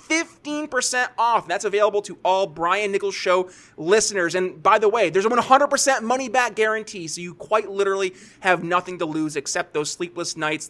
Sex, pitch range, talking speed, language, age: male, 170-235 Hz, 170 wpm, English, 30-49